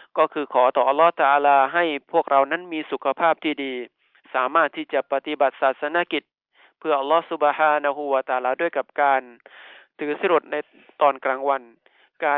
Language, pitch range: Thai, 130-150 Hz